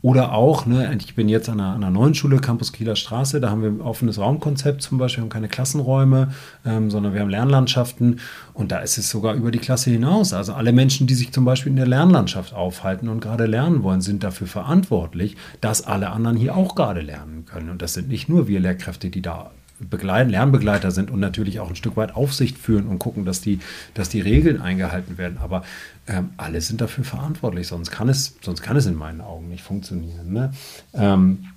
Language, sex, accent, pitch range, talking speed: German, male, German, 95-125 Hz, 215 wpm